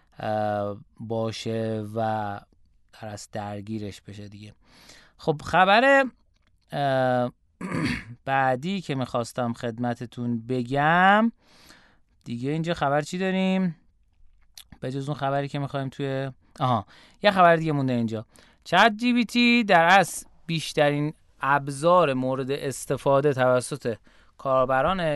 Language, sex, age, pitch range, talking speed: Persian, male, 20-39, 120-155 Hz, 100 wpm